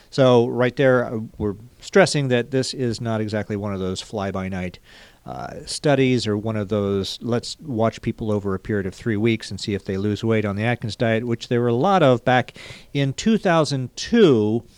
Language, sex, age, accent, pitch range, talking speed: English, male, 50-69, American, 105-130 Hz, 190 wpm